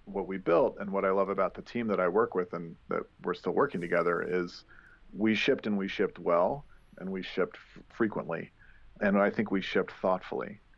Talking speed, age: 205 wpm, 40-59